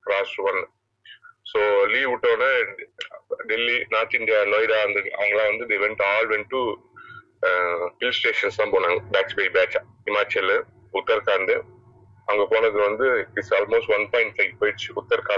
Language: Tamil